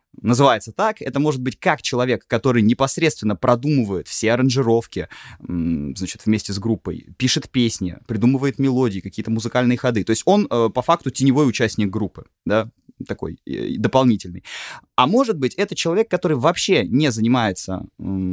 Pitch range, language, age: 105-135 Hz, Russian, 20-39